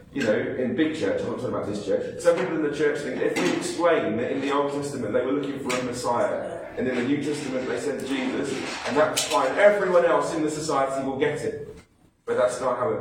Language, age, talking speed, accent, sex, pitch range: English, 30-49, 255 wpm, British, male, 135-175 Hz